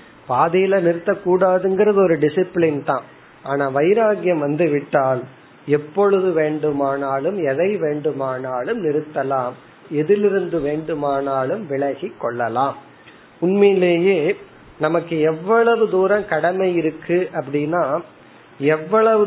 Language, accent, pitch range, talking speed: Tamil, native, 150-195 Hz, 75 wpm